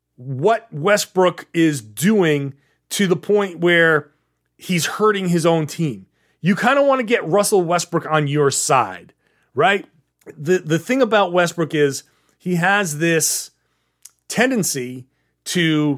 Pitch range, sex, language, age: 140-180 Hz, male, English, 30-49